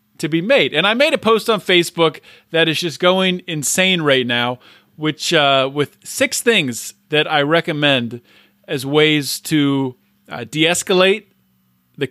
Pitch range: 140-200 Hz